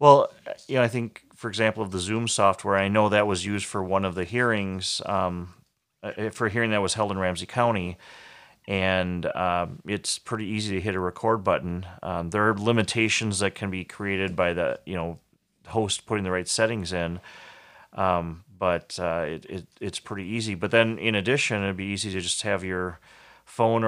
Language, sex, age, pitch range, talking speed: English, male, 30-49, 90-105 Hz, 195 wpm